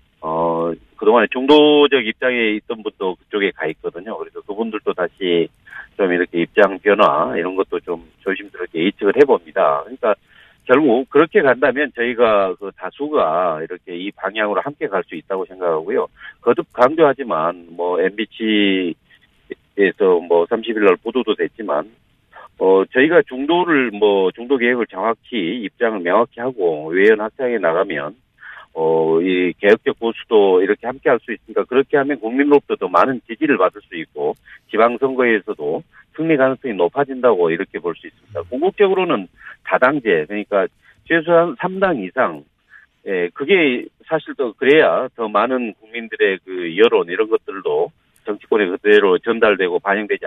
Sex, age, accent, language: male, 40-59, native, Korean